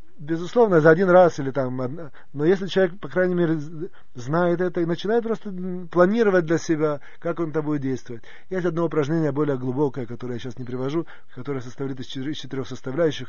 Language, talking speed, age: Russian, 185 wpm, 30-49